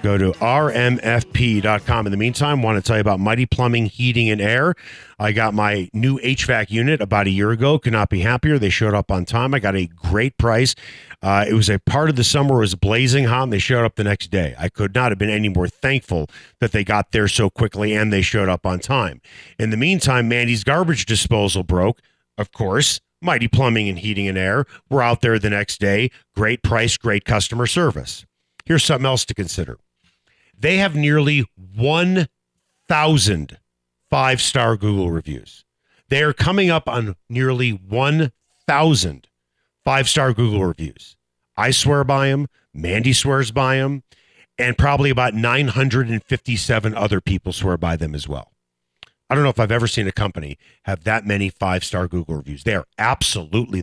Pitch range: 95-130 Hz